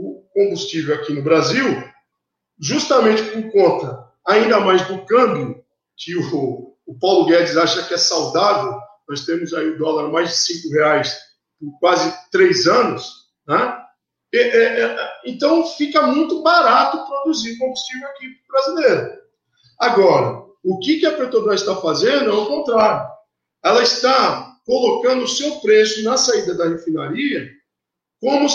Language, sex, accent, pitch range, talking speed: Portuguese, male, Brazilian, 205-320 Hz, 135 wpm